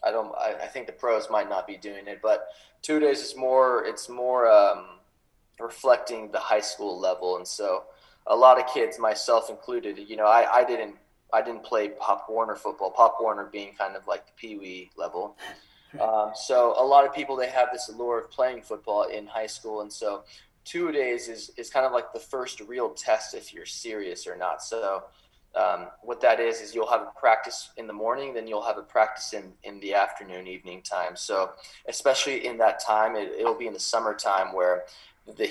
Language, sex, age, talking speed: English, male, 20-39, 210 wpm